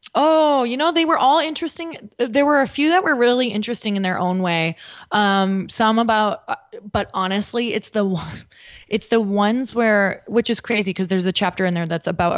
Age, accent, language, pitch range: 20-39, American, English, 180-220 Hz